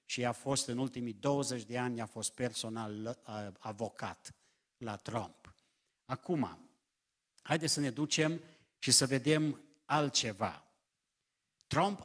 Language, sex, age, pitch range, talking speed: Romanian, male, 50-69, 125-160 Hz, 120 wpm